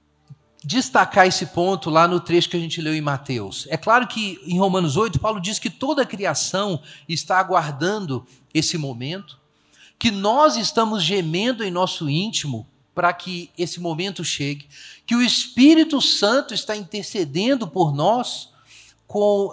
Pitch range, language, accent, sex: 150-215 Hz, Portuguese, Brazilian, male